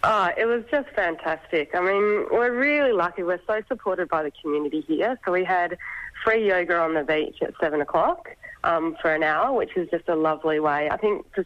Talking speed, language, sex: 215 wpm, English, female